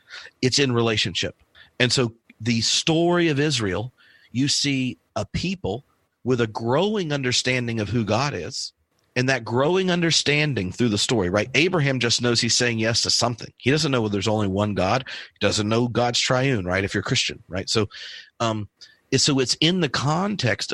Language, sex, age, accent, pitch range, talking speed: English, male, 40-59, American, 110-135 Hz, 180 wpm